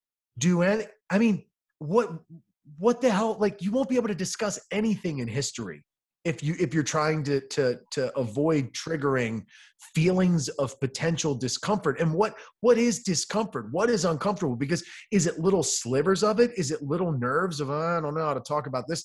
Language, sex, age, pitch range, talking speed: English, male, 30-49, 135-190 Hz, 190 wpm